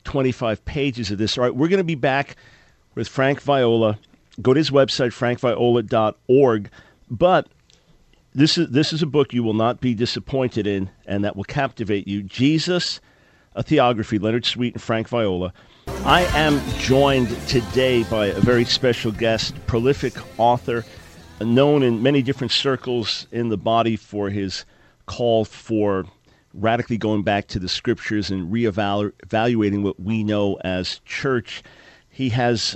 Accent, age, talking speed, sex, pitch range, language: American, 50-69, 150 wpm, male, 105-130 Hz, English